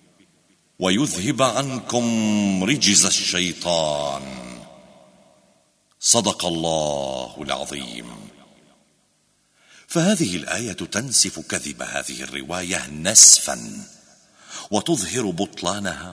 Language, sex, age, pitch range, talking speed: Arabic, male, 50-69, 85-130 Hz, 60 wpm